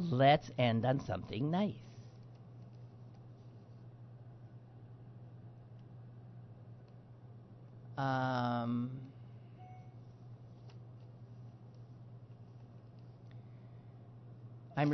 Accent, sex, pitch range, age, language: American, male, 120-145 Hz, 50-69, English